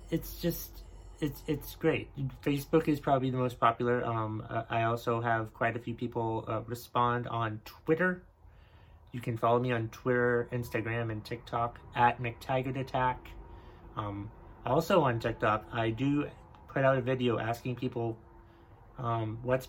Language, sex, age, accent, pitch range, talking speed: English, male, 30-49, American, 110-130 Hz, 150 wpm